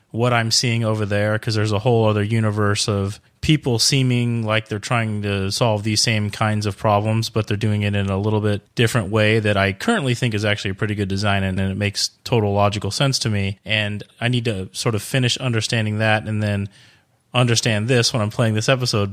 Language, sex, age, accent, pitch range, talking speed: English, male, 30-49, American, 105-115 Hz, 225 wpm